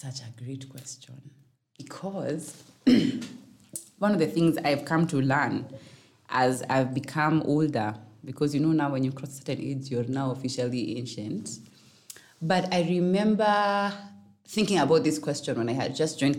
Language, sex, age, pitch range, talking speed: English, female, 20-39, 130-170 Hz, 155 wpm